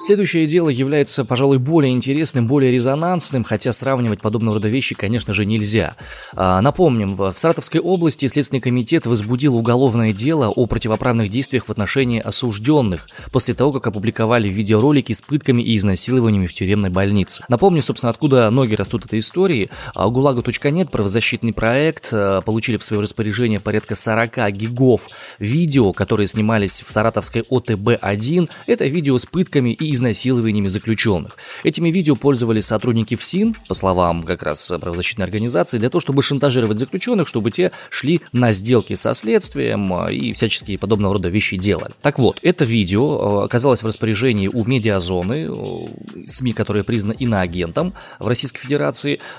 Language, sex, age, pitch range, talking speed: Russian, male, 20-39, 105-135 Hz, 145 wpm